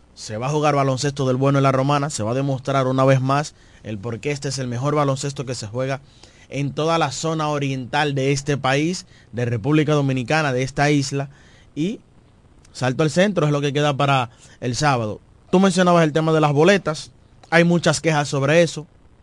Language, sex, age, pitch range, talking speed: Spanish, male, 20-39, 130-160 Hz, 200 wpm